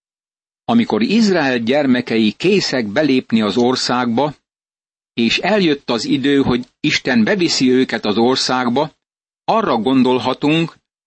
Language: Hungarian